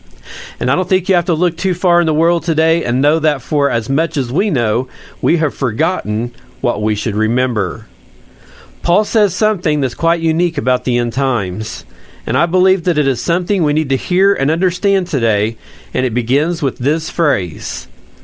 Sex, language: male, English